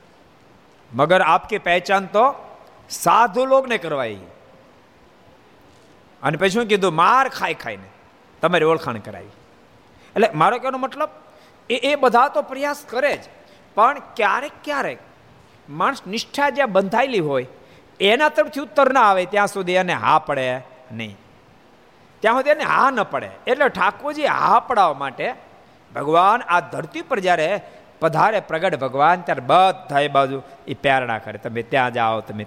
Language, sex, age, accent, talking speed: Gujarati, male, 50-69, native, 85 wpm